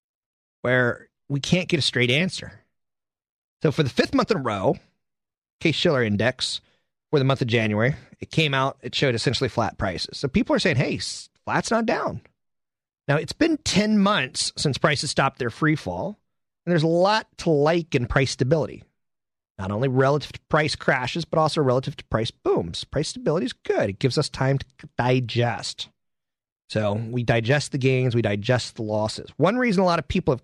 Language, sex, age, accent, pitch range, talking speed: English, male, 30-49, American, 120-160 Hz, 190 wpm